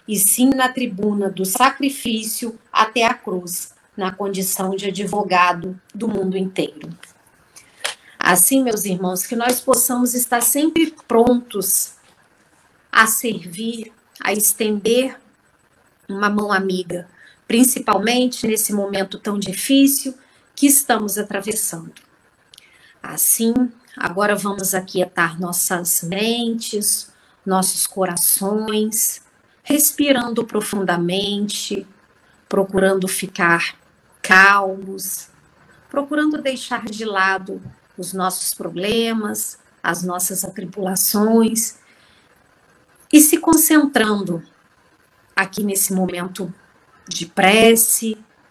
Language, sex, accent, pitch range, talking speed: Portuguese, female, Brazilian, 190-230 Hz, 90 wpm